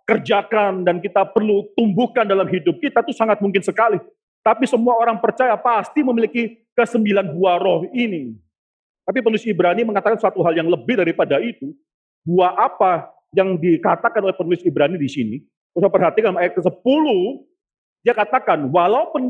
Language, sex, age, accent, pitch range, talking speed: Indonesian, male, 40-59, native, 180-235 Hz, 155 wpm